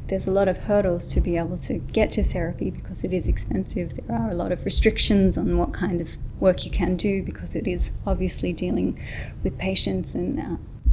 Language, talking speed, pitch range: English, 215 wpm, 160-195 Hz